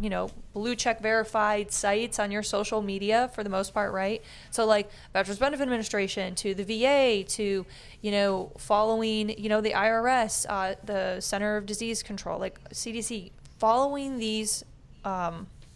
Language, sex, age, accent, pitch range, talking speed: English, female, 20-39, American, 195-225 Hz, 160 wpm